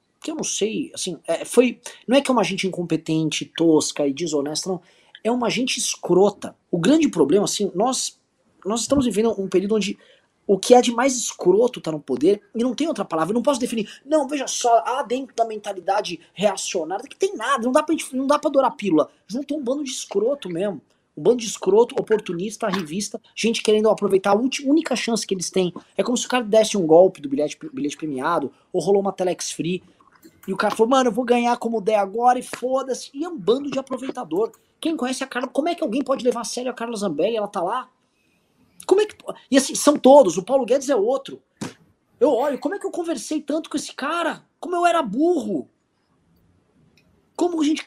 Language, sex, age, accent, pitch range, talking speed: Portuguese, male, 20-39, Brazilian, 200-285 Hz, 225 wpm